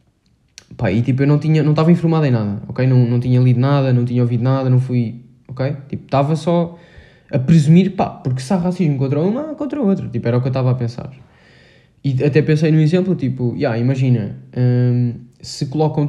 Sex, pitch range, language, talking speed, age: male, 130-170 Hz, Portuguese, 215 wpm, 10-29